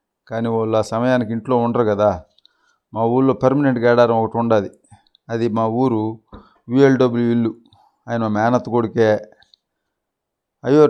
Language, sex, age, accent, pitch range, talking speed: Telugu, male, 30-49, native, 110-130 Hz, 115 wpm